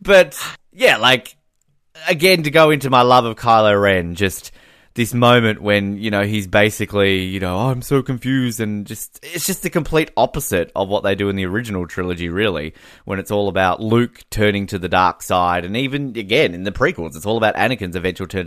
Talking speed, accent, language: 205 wpm, Australian, English